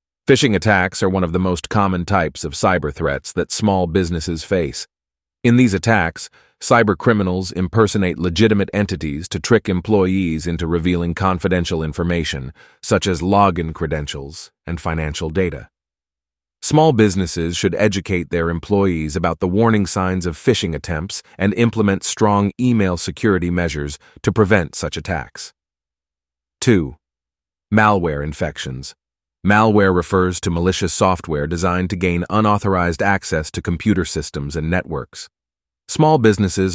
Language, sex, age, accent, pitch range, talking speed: English, male, 30-49, American, 75-95 Hz, 130 wpm